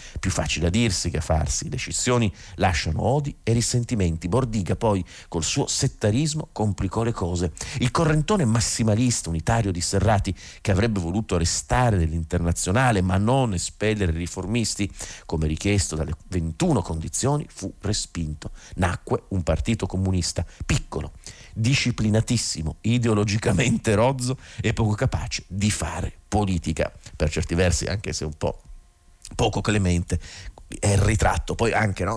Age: 50-69